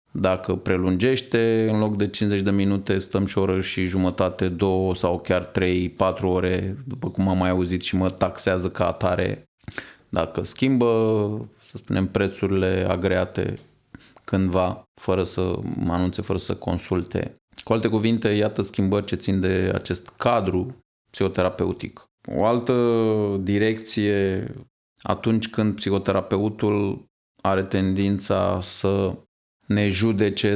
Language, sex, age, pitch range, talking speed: Romanian, male, 20-39, 95-110 Hz, 130 wpm